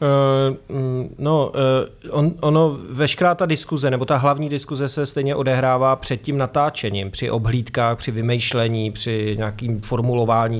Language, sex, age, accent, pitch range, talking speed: Czech, male, 30-49, native, 110-130 Hz, 140 wpm